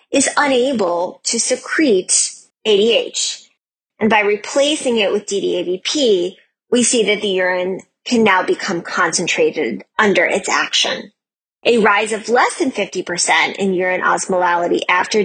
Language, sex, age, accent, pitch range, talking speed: English, female, 30-49, American, 195-290 Hz, 130 wpm